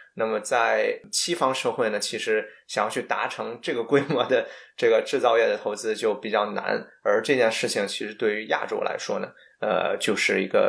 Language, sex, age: Chinese, male, 20-39